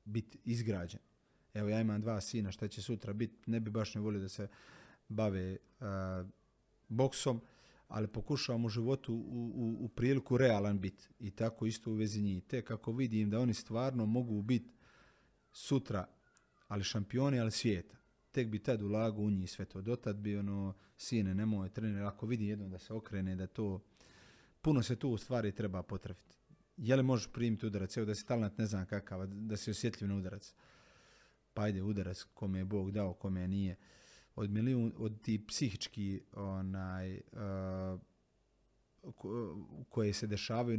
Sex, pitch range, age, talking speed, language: male, 100-115 Hz, 30-49, 170 wpm, Croatian